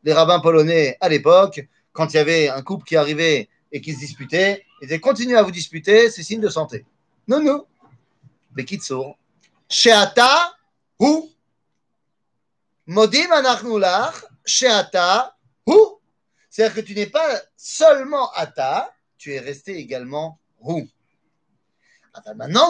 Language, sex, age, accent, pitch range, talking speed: French, male, 30-49, French, 155-230 Hz, 125 wpm